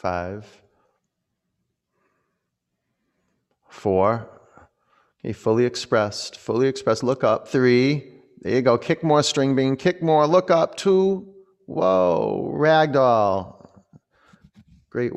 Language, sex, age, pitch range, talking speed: English, male, 30-49, 100-125 Hz, 100 wpm